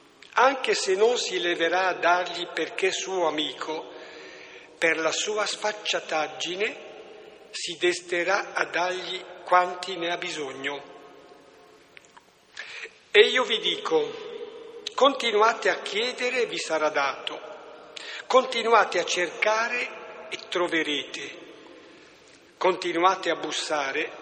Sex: male